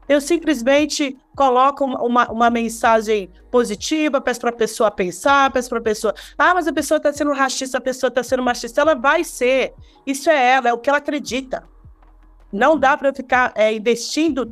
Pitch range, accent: 235-290 Hz, Brazilian